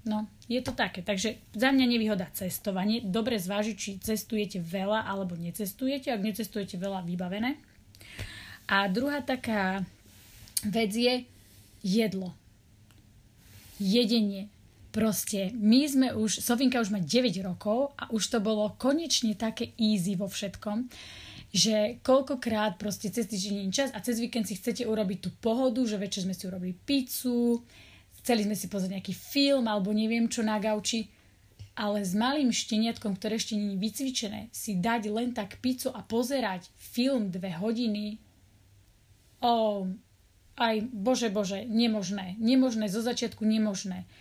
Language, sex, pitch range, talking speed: Slovak, female, 195-235 Hz, 145 wpm